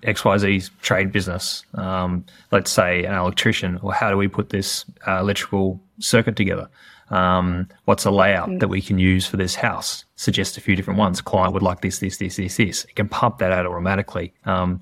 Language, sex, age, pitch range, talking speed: English, male, 20-39, 95-110 Hz, 205 wpm